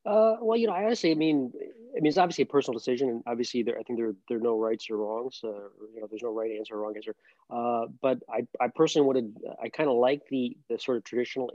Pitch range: 110-130 Hz